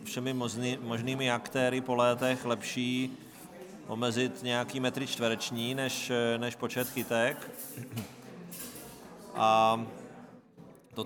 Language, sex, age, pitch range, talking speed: Czech, male, 40-59, 115-125 Hz, 85 wpm